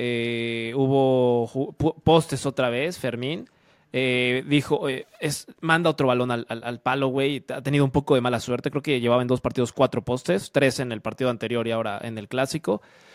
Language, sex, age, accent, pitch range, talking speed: Spanish, male, 20-39, Mexican, 130-170 Hz, 190 wpm